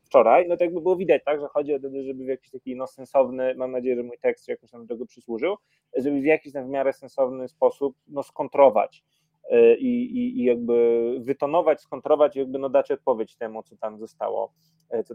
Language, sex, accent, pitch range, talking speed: Polish, male, native, 120-150 Hz, 200 wpm